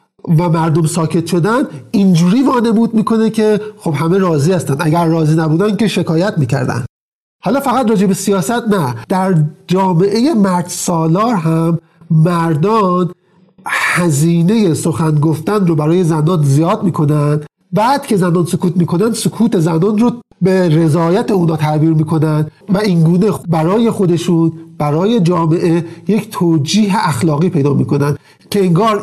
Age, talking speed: 50-69, 130 wpm